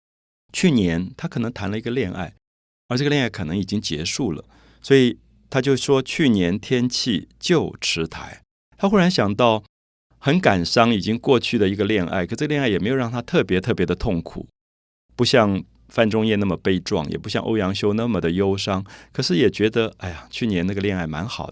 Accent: native